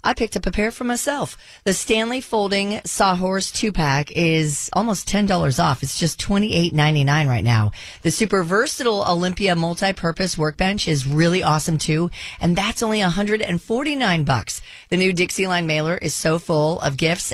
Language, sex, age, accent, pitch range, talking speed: English, female, 40-59, American, 155-200 Hz, 165 wpm